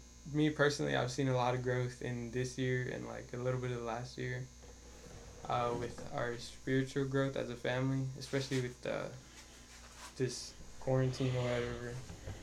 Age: 10-29